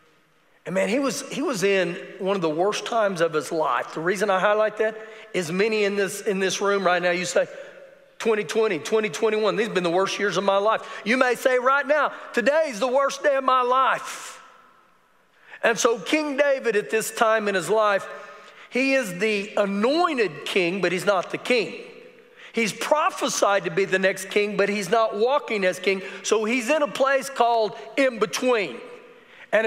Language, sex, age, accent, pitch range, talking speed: English, male, 40-59, American, 205-275 Hz, 195 wpm